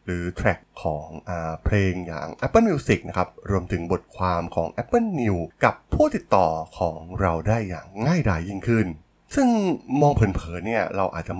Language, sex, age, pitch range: Thai, male, 20-39, 85-120 Hz